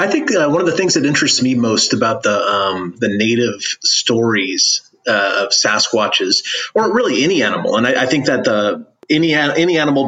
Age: 30-49